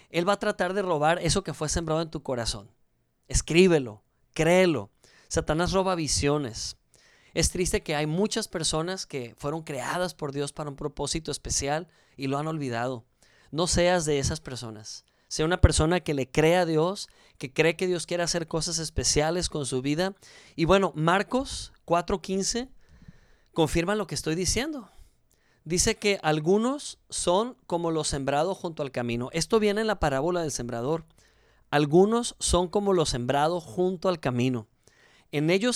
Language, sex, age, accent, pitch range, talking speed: Spanish, male, 30-49, Mexican, 145-195 Hz, 165 wpm